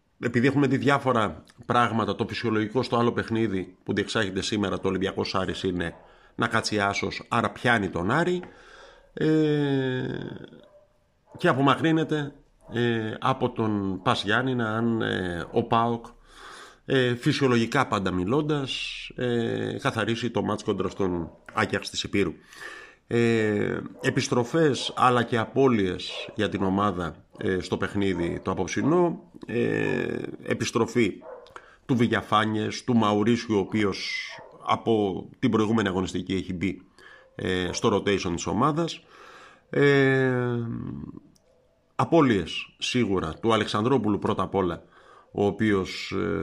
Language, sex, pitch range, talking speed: Greek, male, 100-130 Hz, 100 wpm